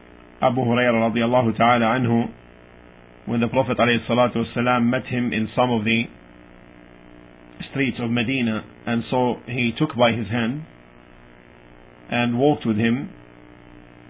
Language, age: English, 50-69